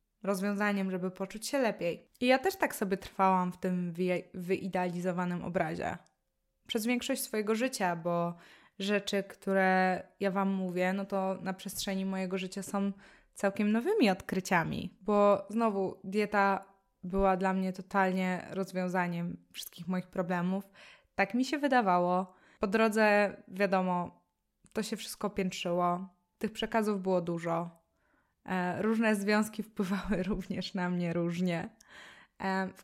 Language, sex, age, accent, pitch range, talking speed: Polish, female, 20-39, native, 185-210 Hz, 125 wpm